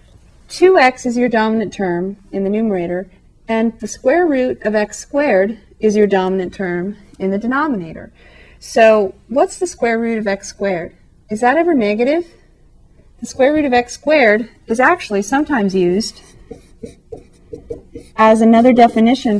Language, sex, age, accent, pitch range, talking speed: English, female, 40-59, American, 195-245 Hz, 145 wpm